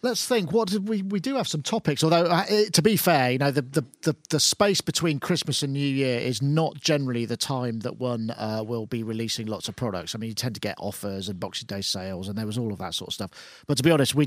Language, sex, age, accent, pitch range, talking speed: English, male, 40-59, British, 125-165 Hz, 280 wpm